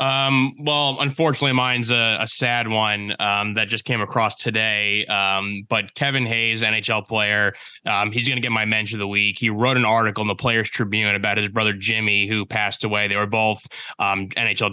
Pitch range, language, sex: 105-115 Hz, English, male